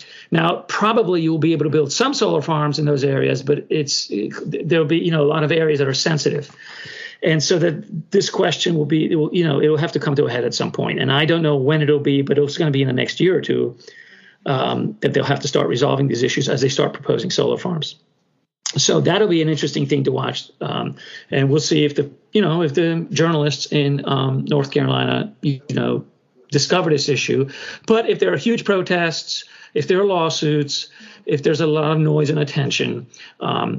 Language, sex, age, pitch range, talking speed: English, male, 40-59, 145-175 Hz, 230 wpm